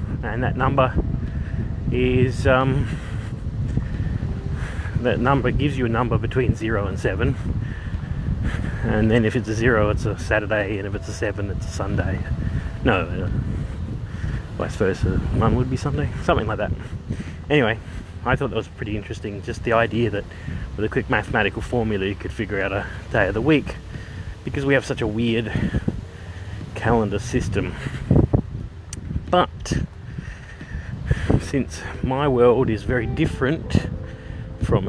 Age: 30-49